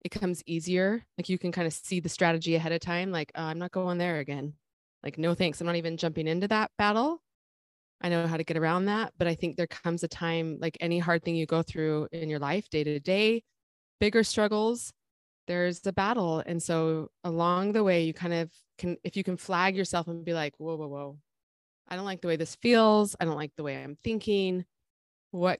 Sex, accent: female, American